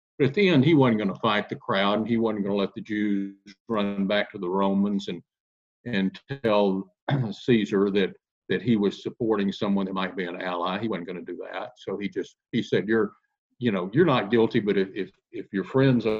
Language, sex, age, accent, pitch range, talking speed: English, male, 50-69, American, 100-125 Hz, 230 wpm